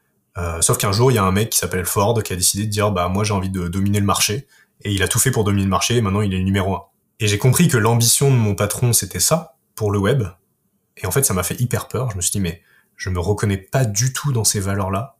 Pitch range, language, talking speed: 95-120 Hz, French, 310 wpm